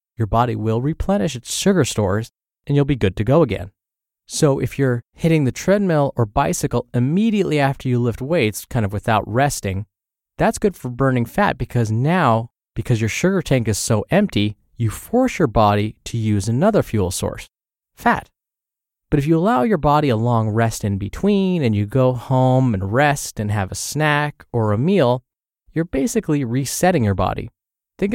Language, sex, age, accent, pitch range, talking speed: English, male, 20-39, American, 110-155 Hz, 180 wpm